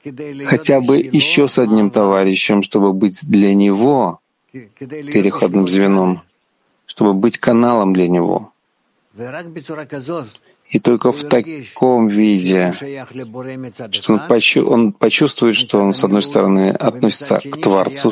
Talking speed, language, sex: 115 wpm, Russian, male